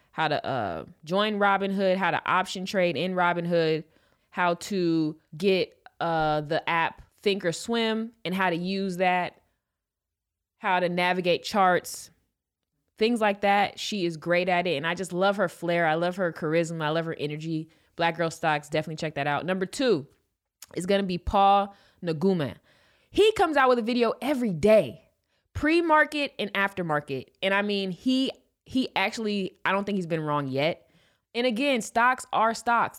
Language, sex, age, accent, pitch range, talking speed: English, female, 20-39, American, 170-215 Hz, 175 wpm